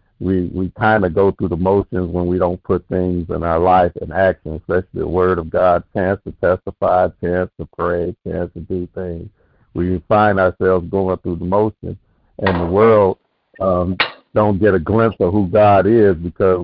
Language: English